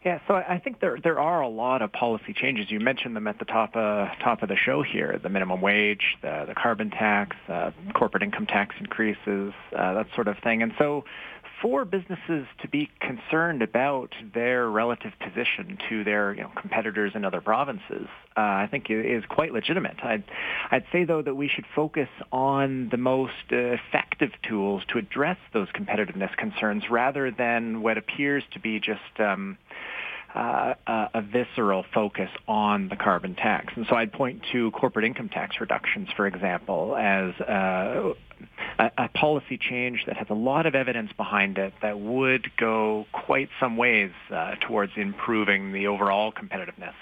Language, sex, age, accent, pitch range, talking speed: English, male, 40-59, American, 105-130 Hz, 175 wpm